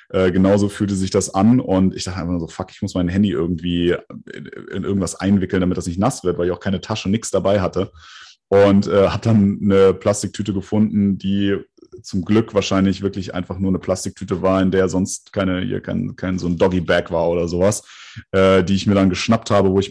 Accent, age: German, 30-49